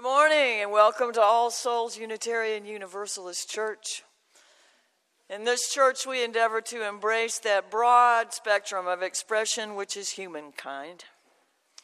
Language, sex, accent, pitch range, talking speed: English, female, American, 170-215 Hz, 125 wpm